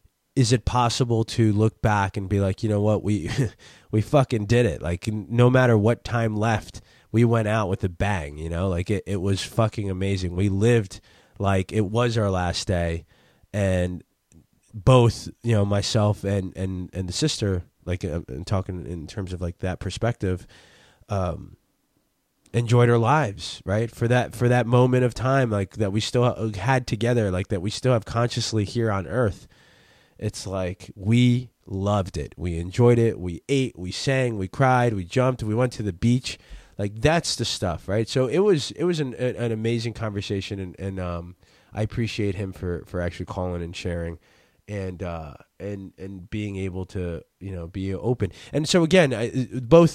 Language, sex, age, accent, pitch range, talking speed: English, male, 20-39, American, 95-120 Hz, 185 wpm